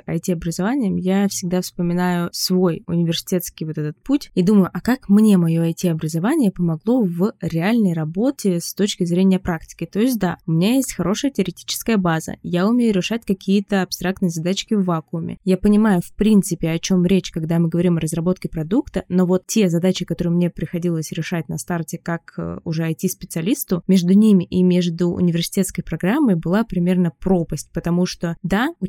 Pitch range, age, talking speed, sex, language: 175-200 Hz, 20-39, 165 wpm, female, Russian